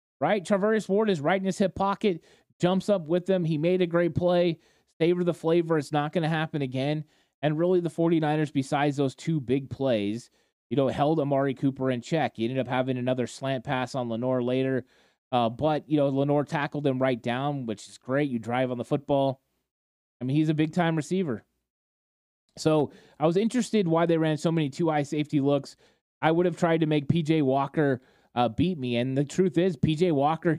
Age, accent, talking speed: 30-49, American, 205 wpm